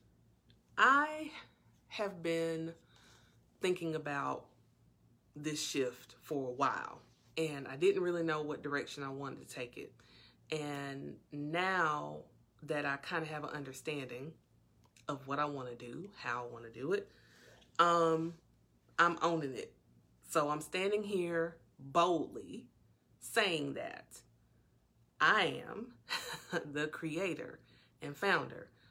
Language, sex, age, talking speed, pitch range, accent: English, female, 30-49, 125 wpm, 135-170 Hz, American